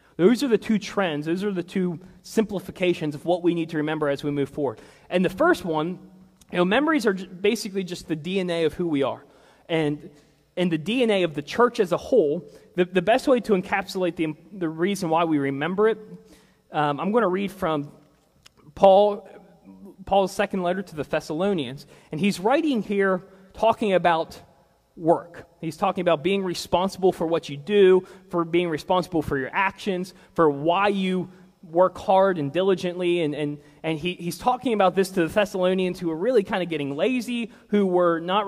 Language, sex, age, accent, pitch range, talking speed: English, male, 30-49, American, 165-195 Hz, 190 wpm